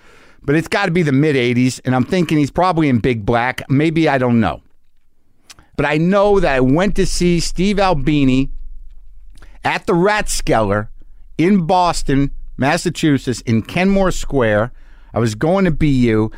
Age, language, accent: 50-69, English, American